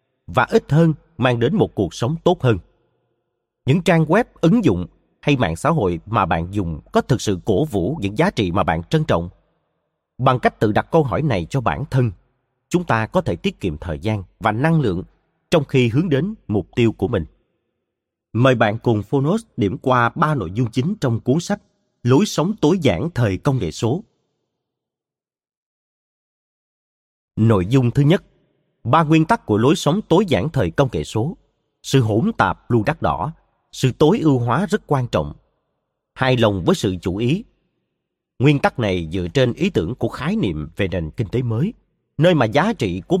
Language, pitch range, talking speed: Vietnamese, 110-155 Hz, 195 wpm